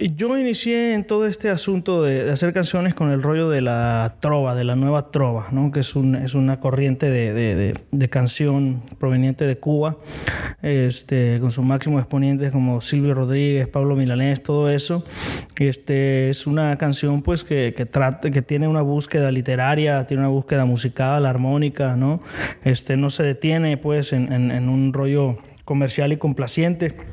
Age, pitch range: 20-39, 130-155 Hz